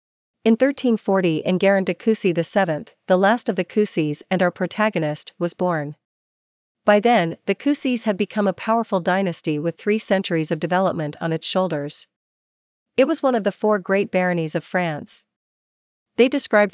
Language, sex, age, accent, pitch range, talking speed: English, female, 40-59, American, 165-210 Hz, 165 wpm